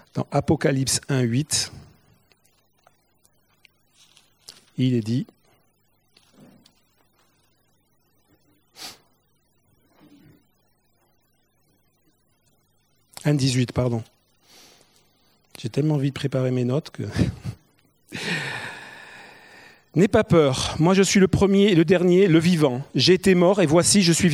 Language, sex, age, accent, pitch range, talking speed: French, male, 50-69, French, 145-195 Hz, 90 wpm